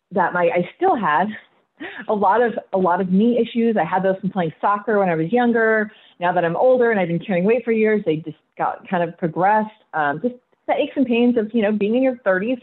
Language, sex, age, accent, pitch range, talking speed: English, female, 30-49, American, 175-235 Hz, 250 wpm